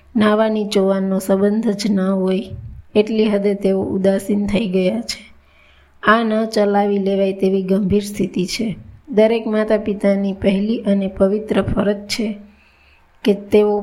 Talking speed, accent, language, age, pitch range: 120 wpm, native, Gujarati, 20-39, 190-210 Hz